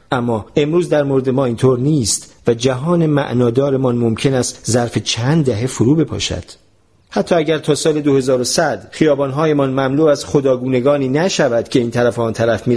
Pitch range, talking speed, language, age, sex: 120-150 Hz, 155 wpm, Persian, 40-59, male